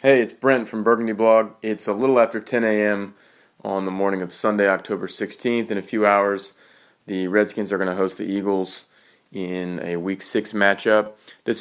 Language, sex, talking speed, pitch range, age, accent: English, male, 190 wpm, 95-110 Hz, 30-49, American